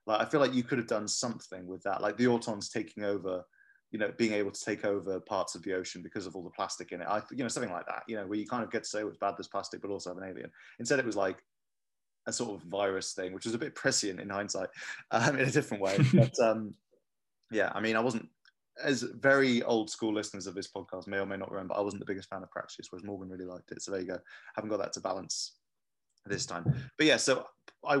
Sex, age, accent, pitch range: male, 20-39, British, 95-115 Hz